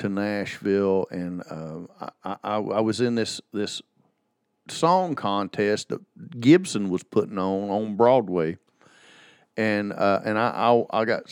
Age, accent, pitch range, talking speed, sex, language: 50-69, American, 95-120 Hz, 145 wpm, male, English